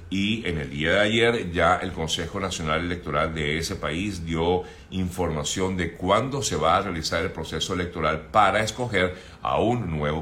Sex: male